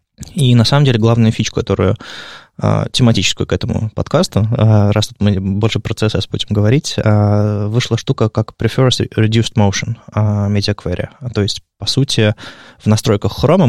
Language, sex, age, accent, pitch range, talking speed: Russian, male, 20-39, native, 95-115 Hz, 145 wpm